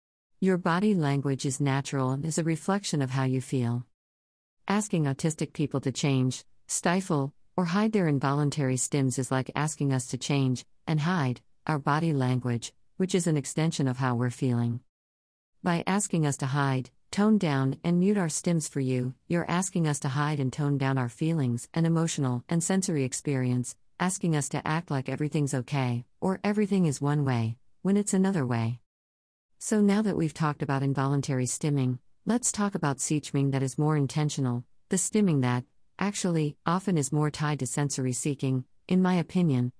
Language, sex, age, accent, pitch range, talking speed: English, female, 50-69, American, 130-175 Hz, 175 wpm